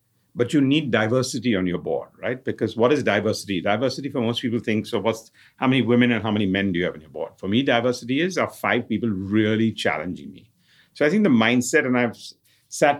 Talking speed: 230 wpm